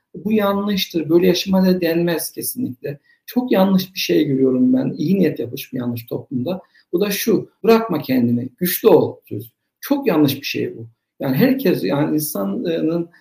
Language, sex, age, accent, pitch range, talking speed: Turkish, male, 60-79, native, 130-180 Hz, 150 wpm